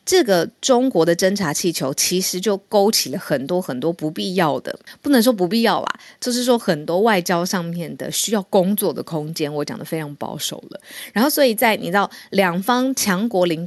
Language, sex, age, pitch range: Chinese, female, 20-39, 155-205 Hz